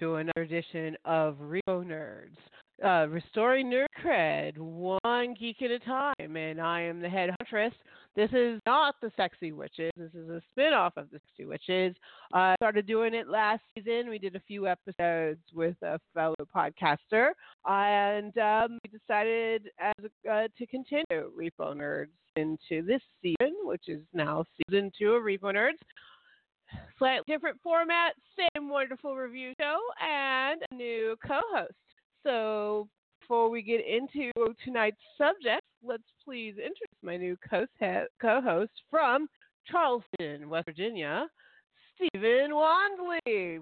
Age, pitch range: 40-59, 185-275 Hz